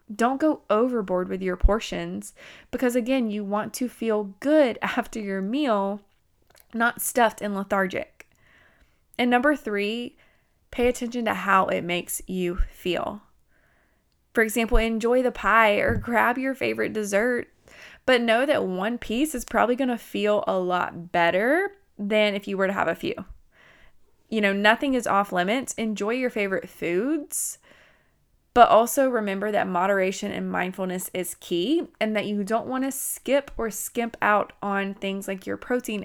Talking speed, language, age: 160 wpm, English, 20-39